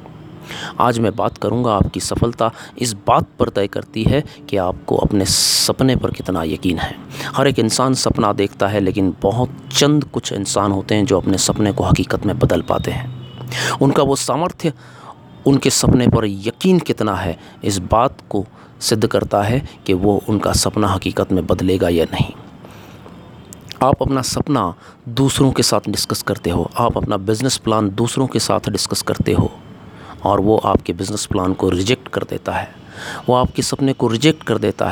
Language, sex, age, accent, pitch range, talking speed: Hindi, male, 30-49, native, 100-130 Hz, 175 wpm